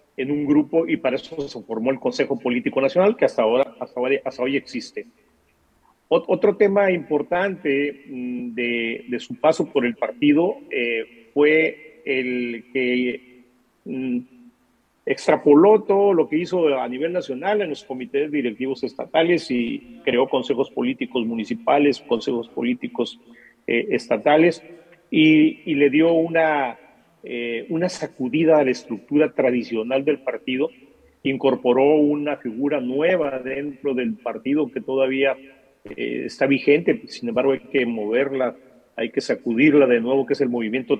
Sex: male